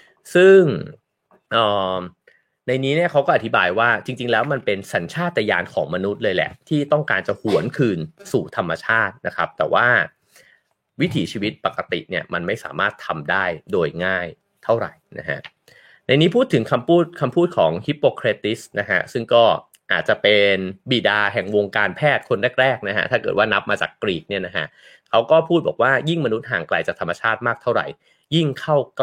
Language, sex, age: English, male, 30-49